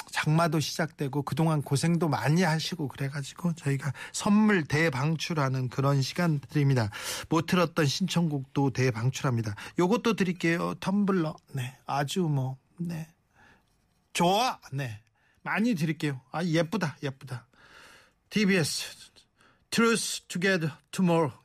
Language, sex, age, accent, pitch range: Korean, male, 40-59, native, 140-185 Hz